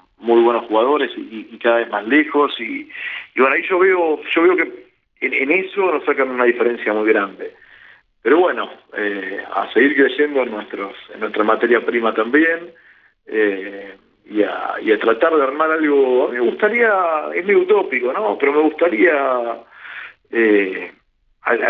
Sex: male